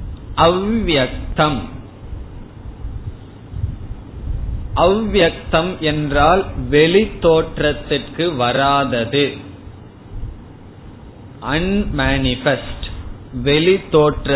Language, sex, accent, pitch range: Tamil, male, native, 115-160 Hz